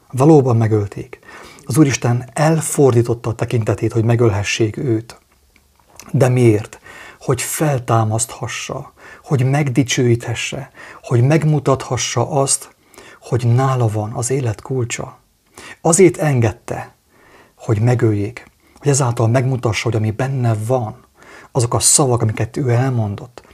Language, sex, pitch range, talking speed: English, male, 115-140 Hz, 105 wpm